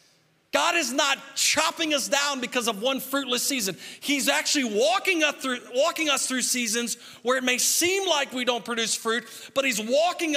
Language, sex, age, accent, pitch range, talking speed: English, male, 40-59, American, 215-310 Hz, 185 wpm